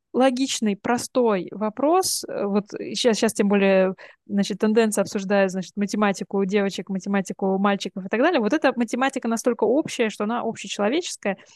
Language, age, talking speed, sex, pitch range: Russian, 20-39, 135 wpm, female, 205-275 Hz